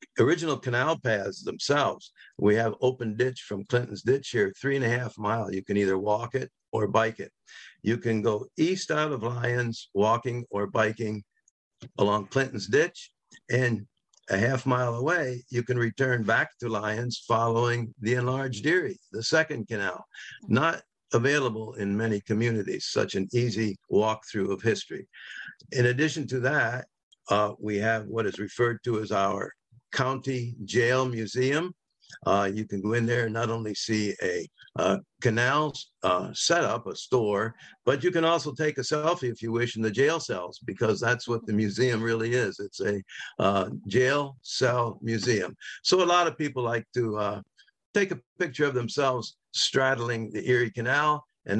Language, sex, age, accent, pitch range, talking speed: English, male, 60-79, American, 110-130 Hz, 170 wpm